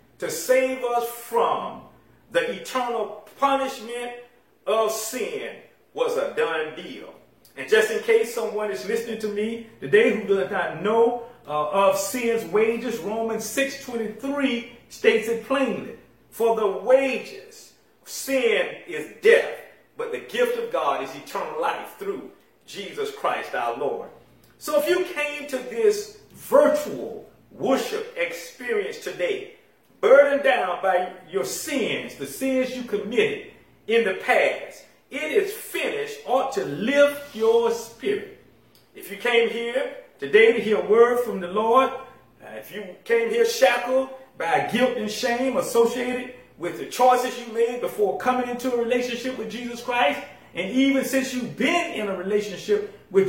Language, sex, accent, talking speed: English, male, American, 145 wpm